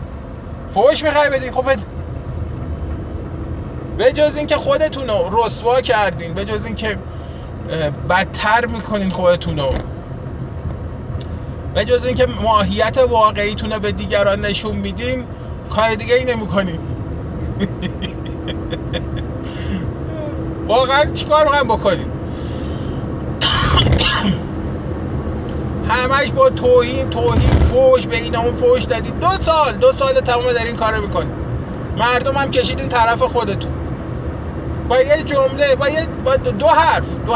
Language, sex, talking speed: Persian, male, 100 wpm